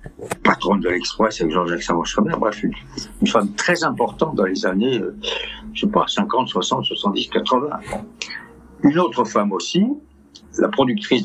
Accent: French